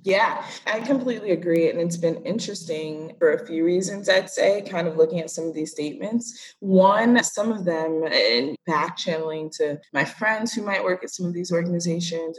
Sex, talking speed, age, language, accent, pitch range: female, 190 wpm, 20-39, English, American, 155-220 Hz